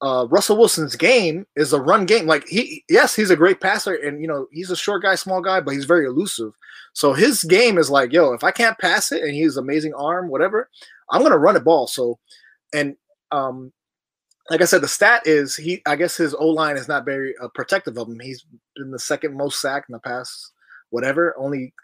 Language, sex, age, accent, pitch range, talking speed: English, male, 20-39, American, 125-175 Hz, 225 wpm